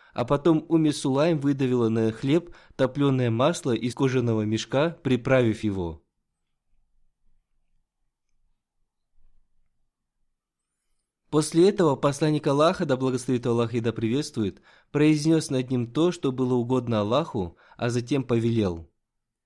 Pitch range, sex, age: 115-145 Hz, male, 20-39